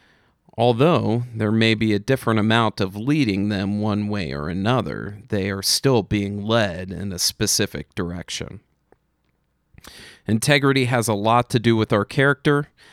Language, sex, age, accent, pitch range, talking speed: English, male, 40-59, American, 105-130 Hz, 150 wpm